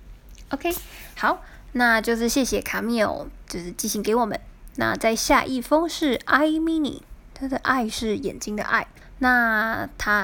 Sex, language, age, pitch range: female, Chinese, 20-39, 210-265 Hz